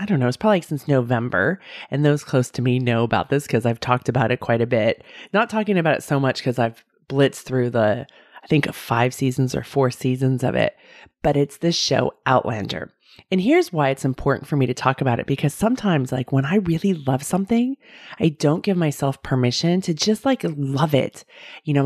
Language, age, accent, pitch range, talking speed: English, 30-49, American, 130-190 Hz, 220 wpm